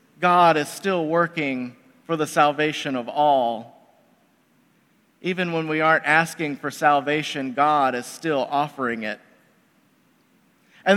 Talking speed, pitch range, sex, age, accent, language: 120 wpm, 165-215 Hz, male, 40-59, American, English